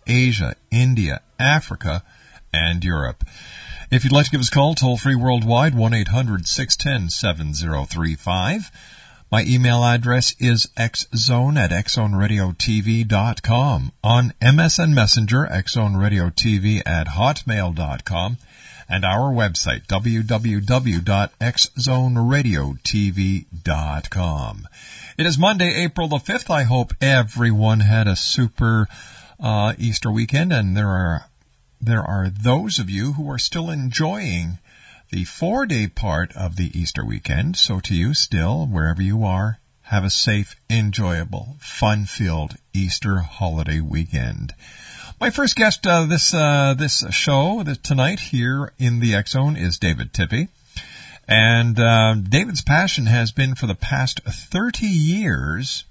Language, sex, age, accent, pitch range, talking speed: English, male, 50-69, American, 95-135 Hz, 120 wpm